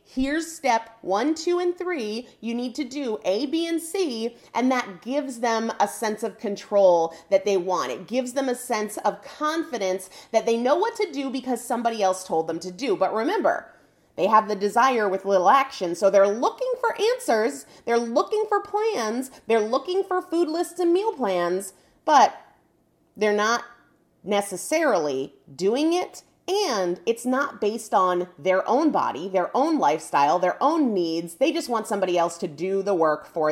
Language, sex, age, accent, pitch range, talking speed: English, female, 30-49, American, 190-300 Hz, 180 wpm